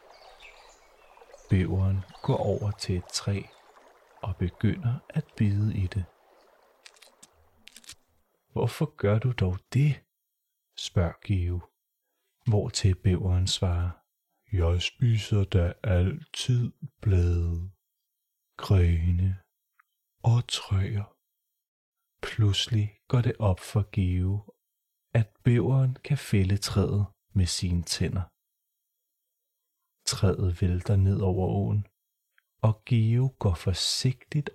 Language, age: Danish, 30-49